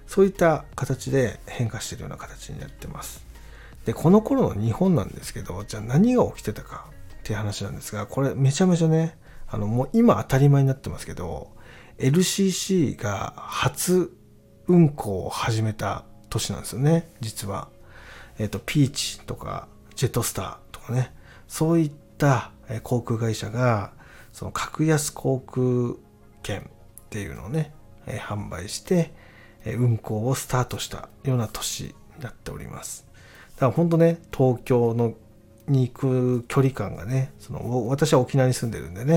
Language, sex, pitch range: Japanese, male, 110-145 Hz